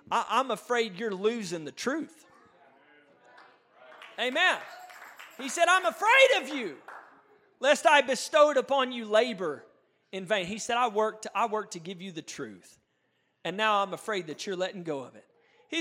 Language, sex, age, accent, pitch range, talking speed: English, male, 40-59, American, 255-345 Hz, 165 wpm